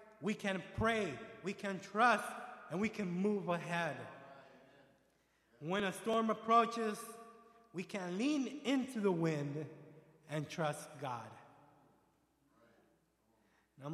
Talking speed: 110 wpm